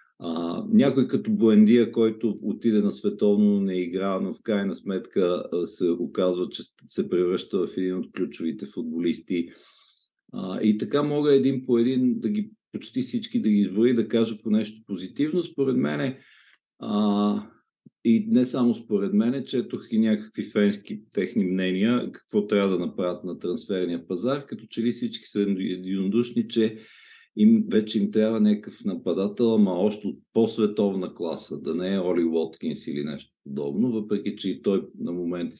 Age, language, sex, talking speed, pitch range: 50-69, Bulgarian, male, 160 wpm, 95-125 Hz